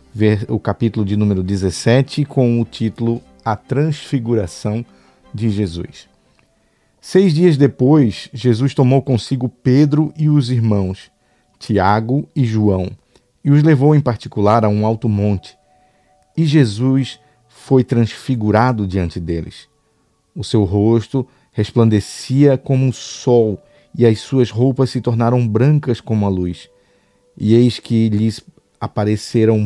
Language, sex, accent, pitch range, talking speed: Portuguese, male, Brazilian, 105-130 Hz, 125 wpm